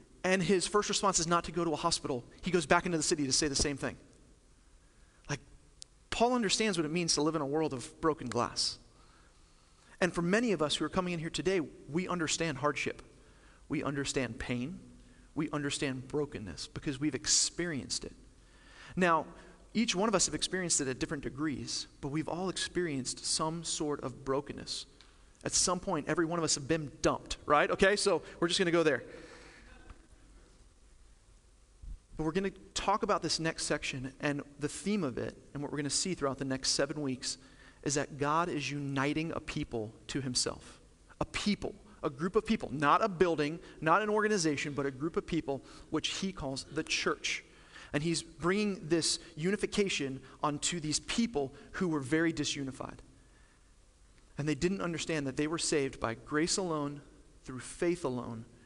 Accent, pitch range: American, 135-175 Hz